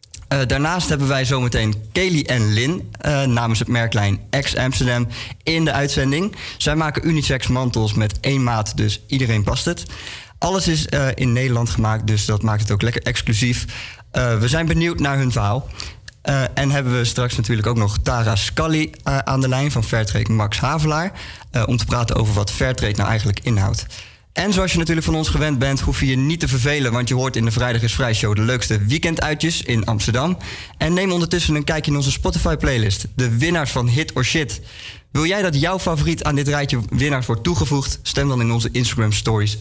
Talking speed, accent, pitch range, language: 205 wpm, Dutch, 110-140 Hz, Dutch